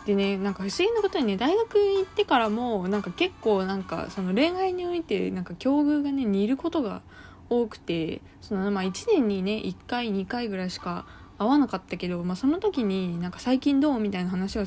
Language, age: Japanese, 20-39